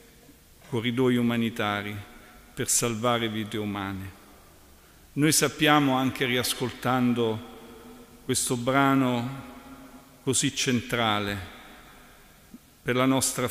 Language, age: Italian, 50-69